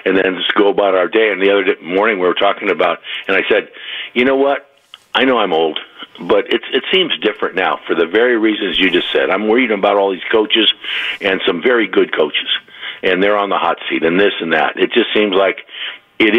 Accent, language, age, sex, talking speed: American, English, 50-69, male, 235 wpm